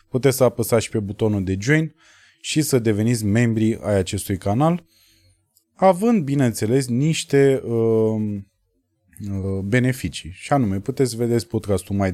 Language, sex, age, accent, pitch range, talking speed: Romanian, male, 20-39, native, 95-125 Hz, 140 wpm